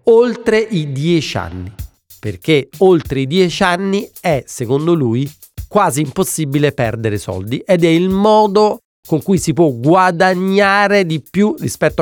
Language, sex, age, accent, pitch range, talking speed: Italian, male, 40-59, native, 125-175 Hz, 140 wpm